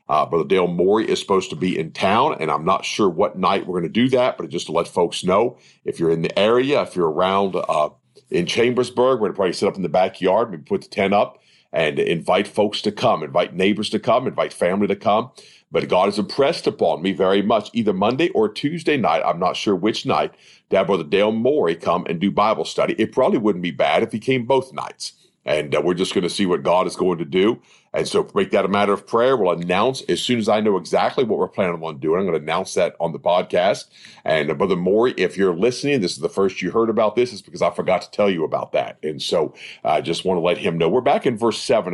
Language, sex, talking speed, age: English, male, 260 wpm, 50-69